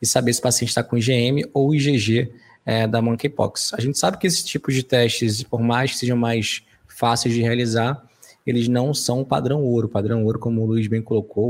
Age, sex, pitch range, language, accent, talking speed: 20-39, male, 110-130 Hz, Portuguese, Brazilian, 225 wpm